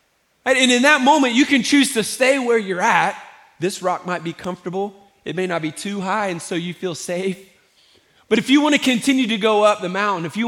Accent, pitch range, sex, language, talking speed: American, 180-225 Hz, male, English, 235 wpm